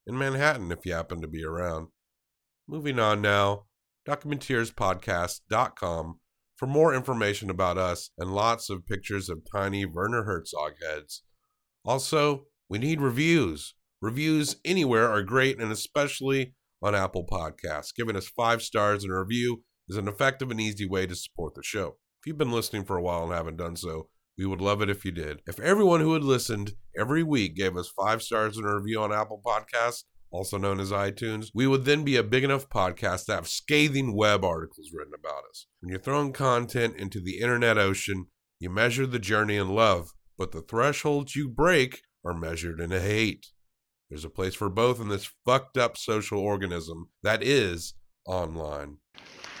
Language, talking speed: English, 180 wpm